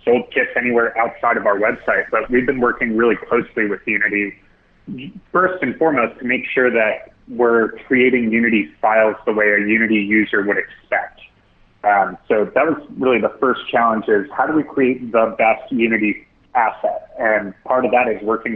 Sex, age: male, 30-49